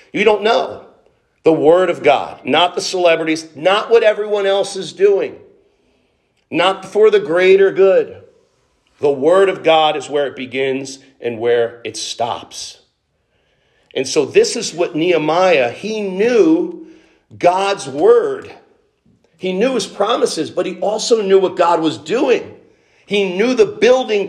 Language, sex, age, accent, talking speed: English, male, 50-69, American, 145 wpm